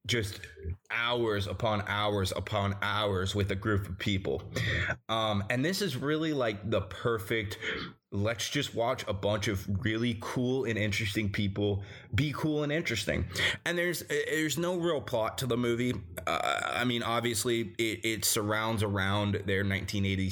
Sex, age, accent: male, 20-39, American